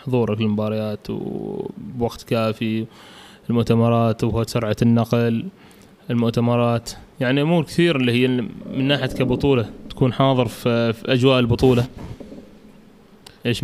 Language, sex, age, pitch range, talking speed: Arabic, male, 20-39, 115-135 Hz, 95 wpm